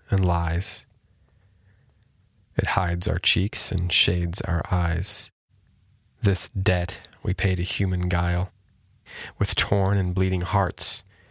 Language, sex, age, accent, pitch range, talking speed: English, male, 20-39, American, 90-100 Hz, 115 wpm